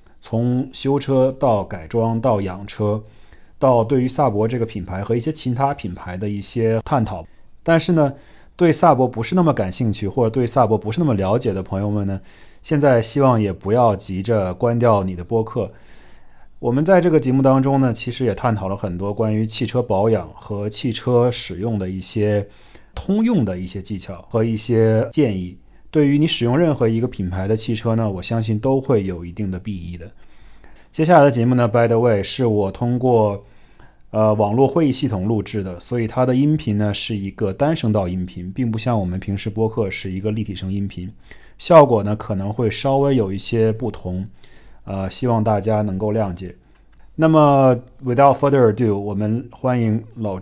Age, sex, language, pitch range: 30-49, male, Chinese, 100-125 Hz